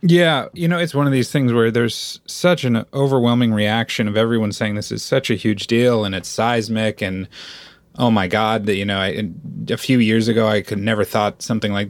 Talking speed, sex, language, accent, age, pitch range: 215 wpm, male, English, American, 30-49, 105-130 Hz